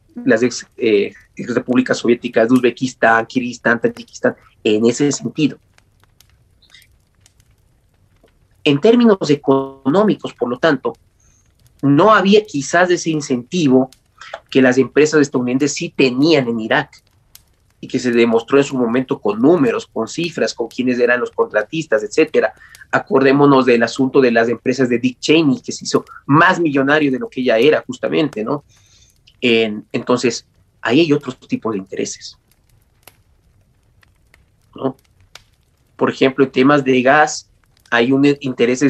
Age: 30-49